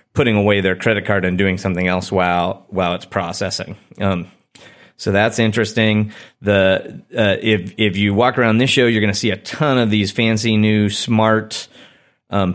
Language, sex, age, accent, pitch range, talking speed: English, male, 30-49, American, 95-110 Hz, 180 wpm